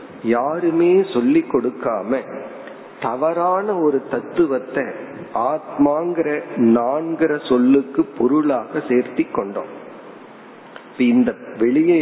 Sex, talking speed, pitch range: male, 60 wpm, 130-185 Hz